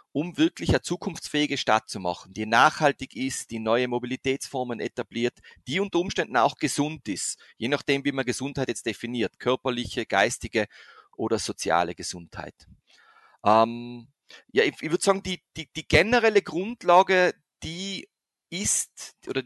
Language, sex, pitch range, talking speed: German, male, 115-155 Hz, 140 wpm